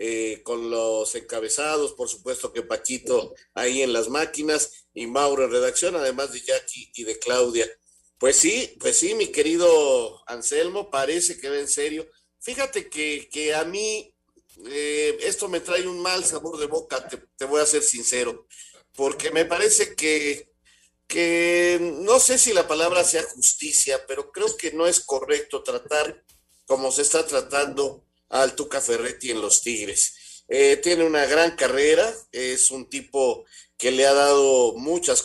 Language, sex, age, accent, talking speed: Spanish, male, 50-69, Mexican, 165 wpm